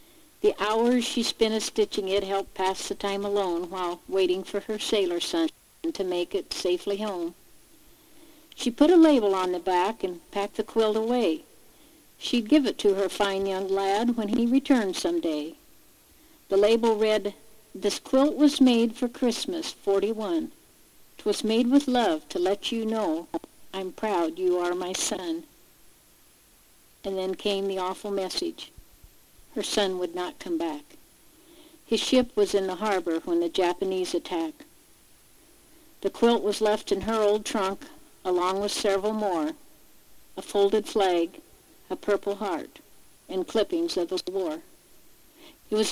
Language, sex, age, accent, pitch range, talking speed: English, female, 60-79, American, 195-310 Hz, 155 wpm